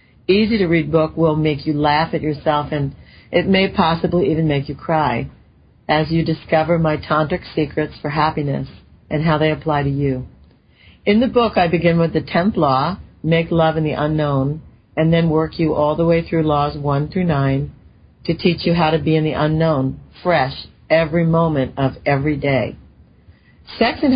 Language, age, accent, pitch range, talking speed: English, 50-69, American, 145-170 Hz, 185 wpm